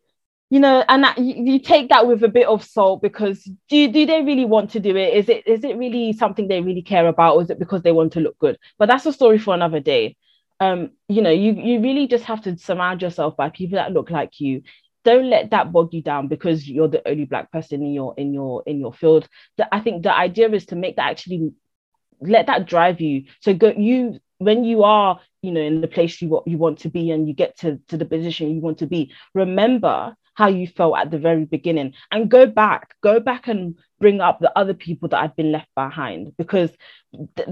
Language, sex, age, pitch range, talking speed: English, female, 20-39, 165-230 Hz, 240 wpm